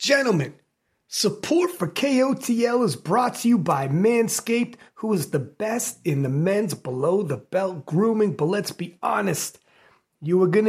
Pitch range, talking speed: 175-255 Hz, 145 wpm